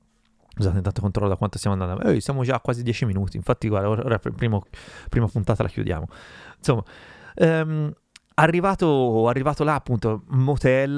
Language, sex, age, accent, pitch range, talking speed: Italian, male, 30-49, native, 110-130 Hz, 165 wpm